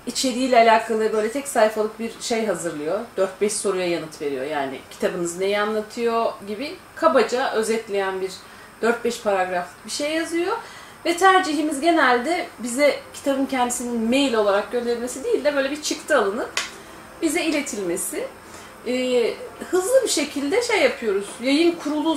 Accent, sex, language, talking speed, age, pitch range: native, female, Turkish, 135 wpm, 40-59, 215-300 Hz